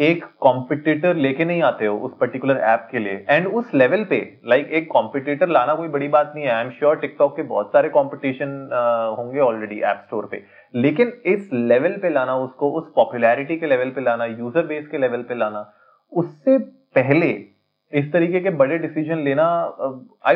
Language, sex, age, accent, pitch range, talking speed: Hindi, male, 30-49, native, 115-155 Hz, 190 wpm